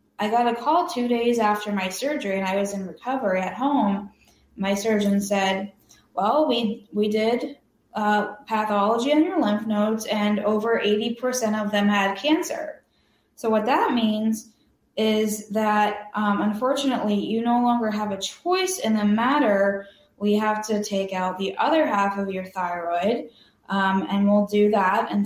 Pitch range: 200-235 Hz